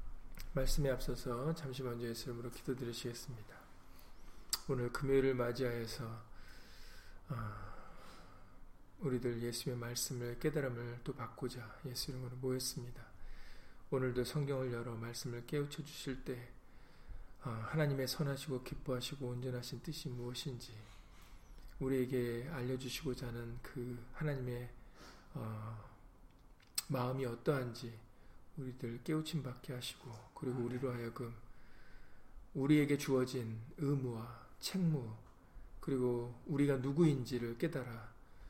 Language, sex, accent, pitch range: Korean, male, native, 115-135 Hz